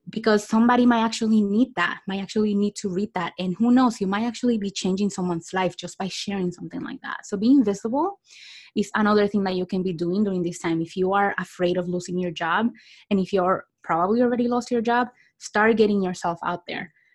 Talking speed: 220 wpm